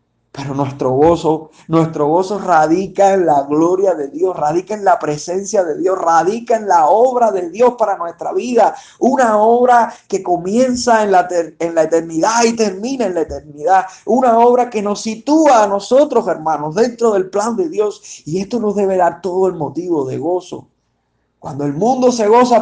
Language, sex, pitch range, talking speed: Spanish, male, 145-205 Hz, 180 wpm